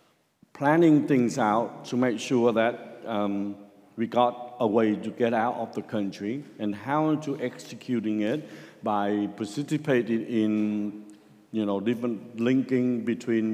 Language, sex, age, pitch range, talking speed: English, male, 60-79, 105-130 Hz, 135 wpm